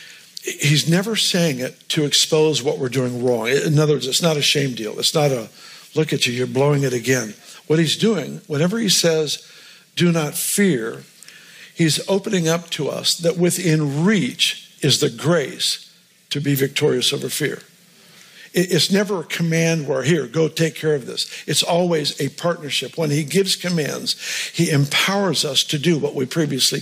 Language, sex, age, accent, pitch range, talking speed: English, male, 50-69, American, 145-175 Hz, 180 wpm